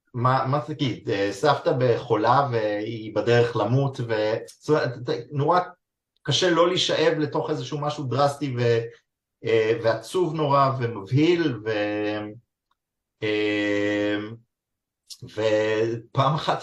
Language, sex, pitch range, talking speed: Hebrew, male, 105-135 Hz, 85 wpm